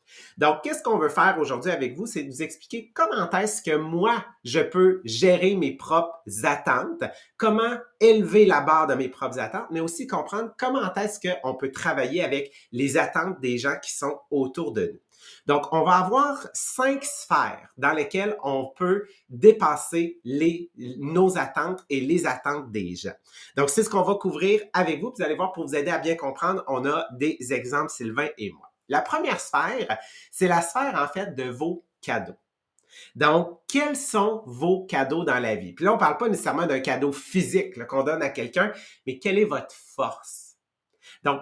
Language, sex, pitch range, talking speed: English, male, 145-210 Hz, 185 wpm